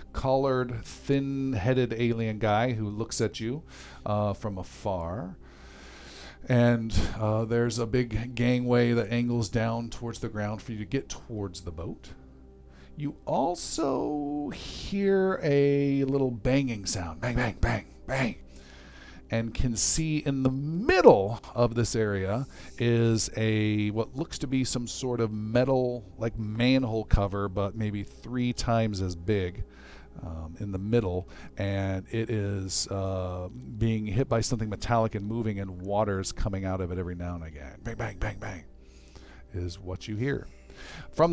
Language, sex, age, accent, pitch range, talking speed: English, male, 40-59, American, 95-130 Hz, 150 wpm